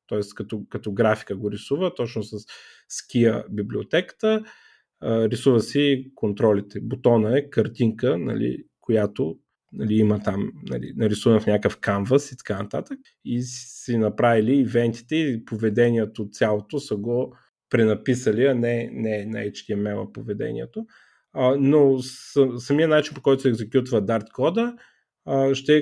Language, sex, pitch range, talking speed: Bulgarian, male, 110-135 Hz, 130 wpm